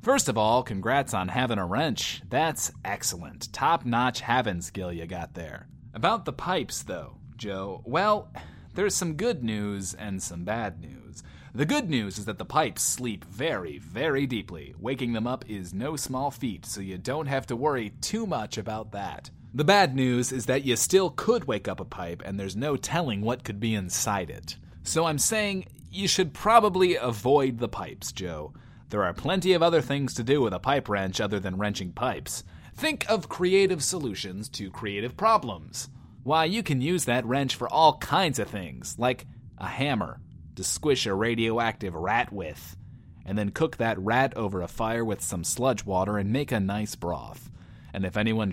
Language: English